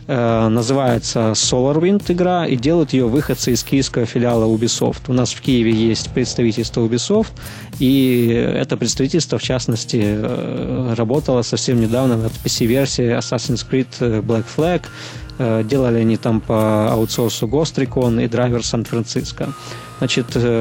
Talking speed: 130 wpm